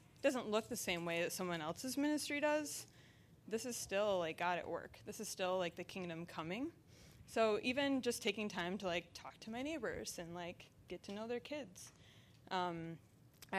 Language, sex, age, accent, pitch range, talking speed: English, female, 20-39, American, 170-210 Hz, 195 wpm